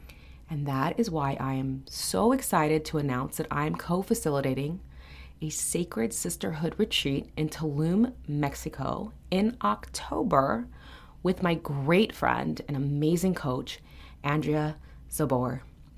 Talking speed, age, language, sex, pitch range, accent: 120 wpm, 30-49, English, female, 130-170 Hz, American